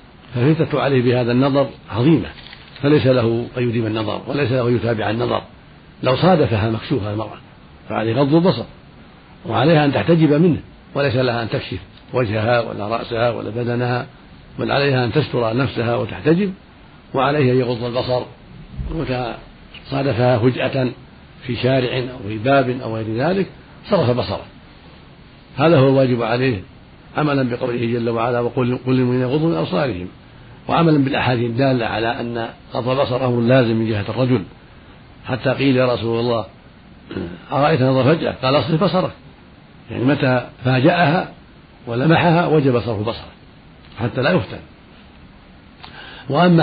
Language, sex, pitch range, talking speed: Arabic, male, 115-140 Hz, 130 wpm